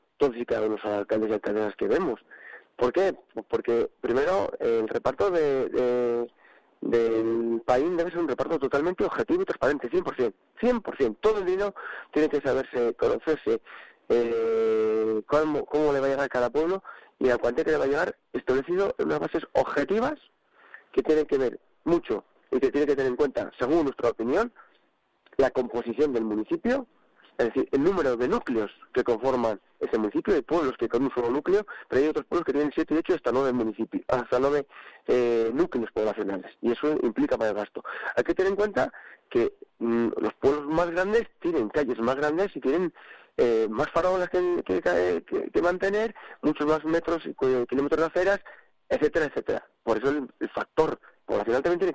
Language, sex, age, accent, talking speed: Spanish, male, 40-59, Spanish, 180 wpm